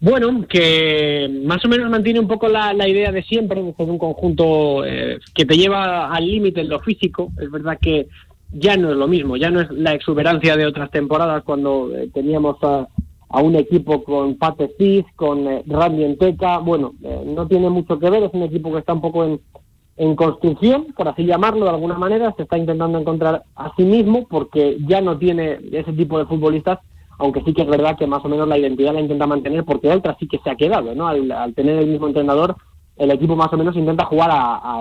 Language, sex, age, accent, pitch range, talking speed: Spanish, male, 20-39, Spanish, 145-180 Hz, 225 wpm